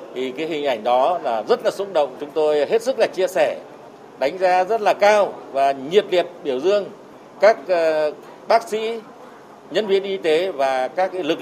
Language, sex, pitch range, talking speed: Vietnamese, male, 155-215 Hz, 195 wpm